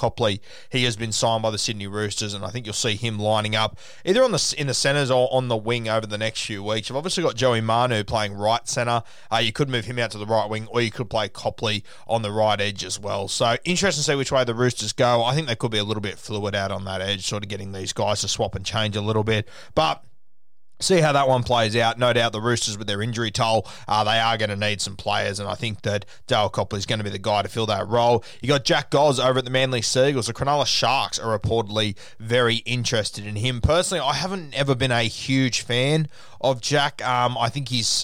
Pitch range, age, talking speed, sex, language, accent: 105-130 Hz, 20-39, 260 wpm, male, English, Australian